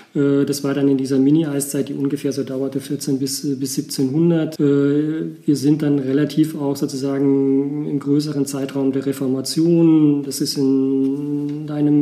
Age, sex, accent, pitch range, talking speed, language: 40-59, male, German, 140-155 Hz, 145 wpm, German